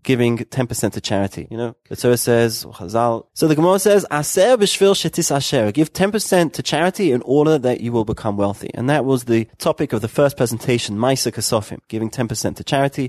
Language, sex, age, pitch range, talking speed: English, male, 30-49, 115-150 Hz, 185 wpm